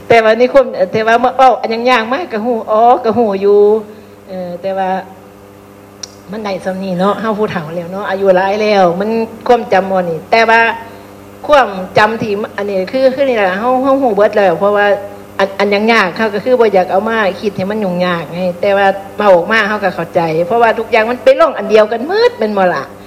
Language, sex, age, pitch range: Thai, female, 60-79, 190-250 Hz